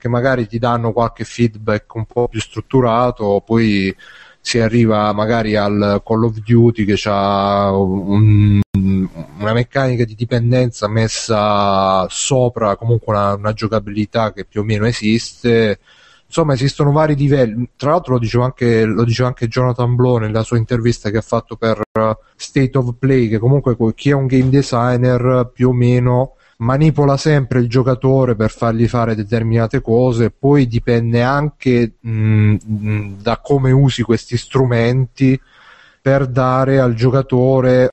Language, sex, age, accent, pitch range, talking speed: Italian, male, 30-49, native, 105-125 Hz, 145 wpm